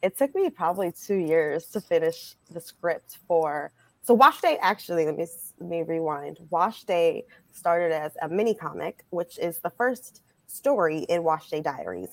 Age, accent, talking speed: 20-39, American, 180 wpm